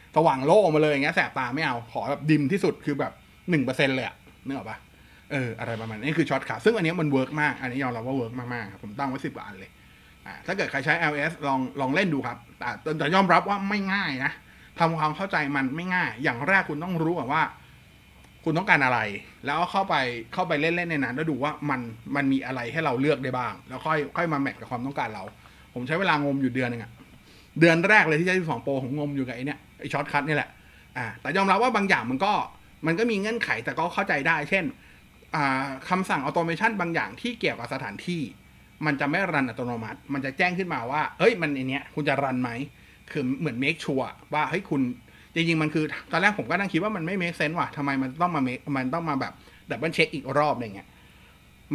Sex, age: male, 20-39